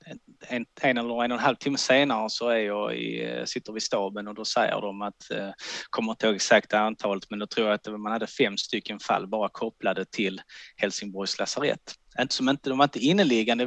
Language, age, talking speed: Swedish, 20-39, 200 wpm